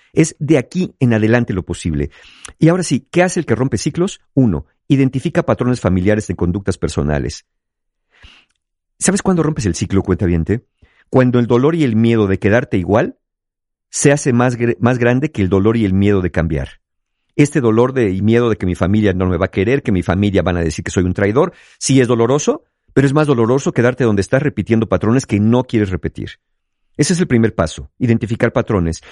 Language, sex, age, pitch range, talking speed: Spanish, male, 50-69, 100-140 Hz, 200 wpm